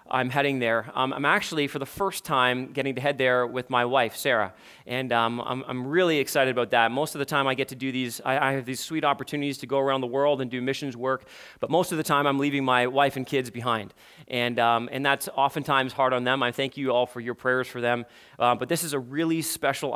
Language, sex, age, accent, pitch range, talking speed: English, male, 30-49, American, 125-150 Hz, 255 wpm